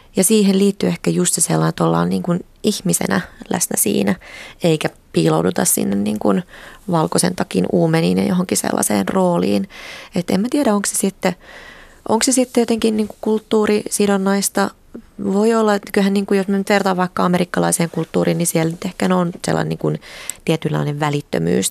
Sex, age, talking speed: female, 20-39, 165 wpm